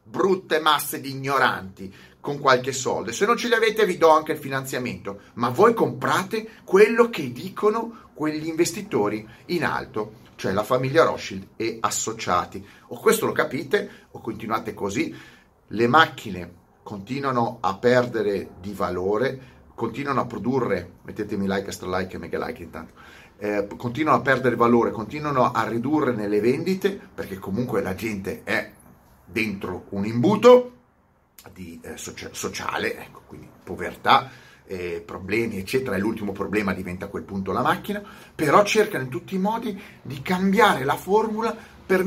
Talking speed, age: 150 wpm, 30-49